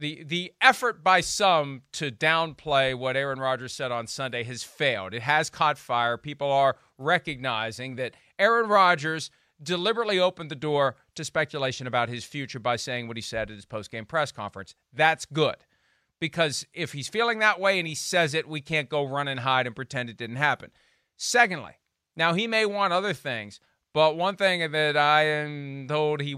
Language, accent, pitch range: English, American, 125-160 Hz